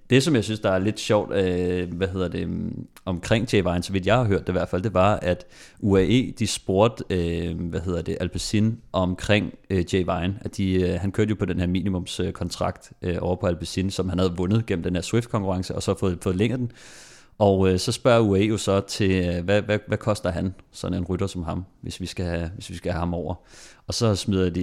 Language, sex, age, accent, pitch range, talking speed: Danish, male, 30-49, native, 90-115 Hz, 240 wpm